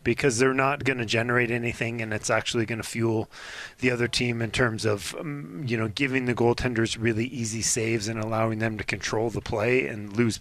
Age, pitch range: 30-49, 110-130 Hz